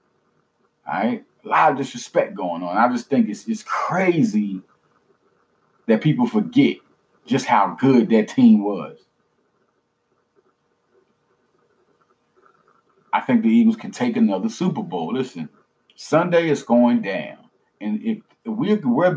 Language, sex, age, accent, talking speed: English, male, 40-59, American, 130 wpm